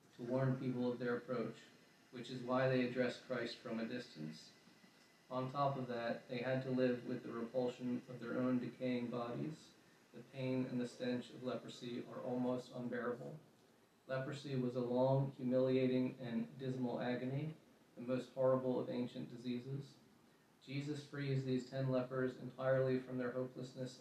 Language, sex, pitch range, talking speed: English, male, 125-130 Hz, 160 wpm